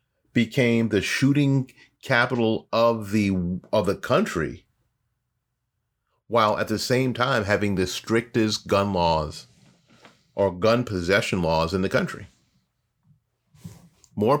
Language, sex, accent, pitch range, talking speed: English, male, American, 100-120 Hz, 110 wpm